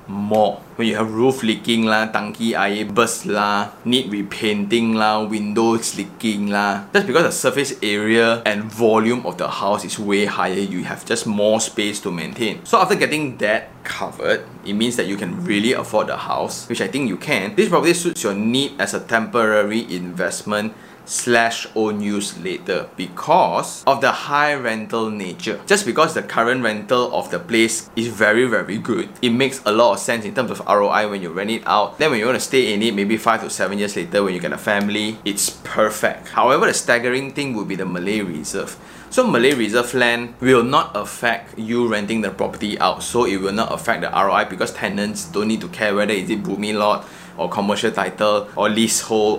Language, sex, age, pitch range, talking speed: English, male, 20-39, 105-115 Hz, 200 wpm